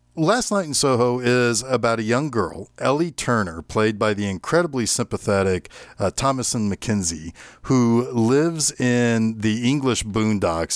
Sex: male